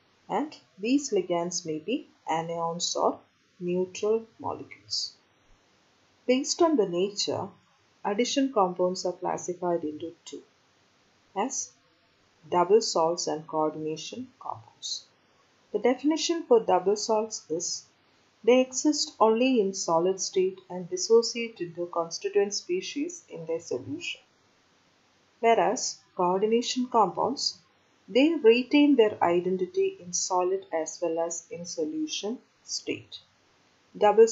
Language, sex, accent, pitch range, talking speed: English, female, Indian, 175-240 Hz, 105 wpm